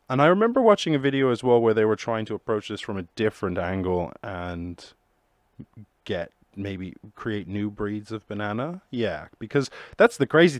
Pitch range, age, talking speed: 95-135 Hz, 30-49, 180 wpm